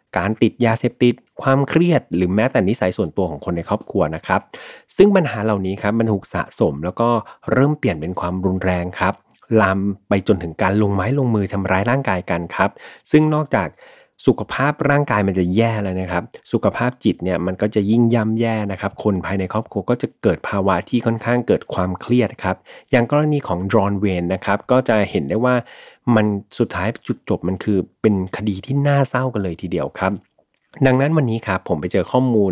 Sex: male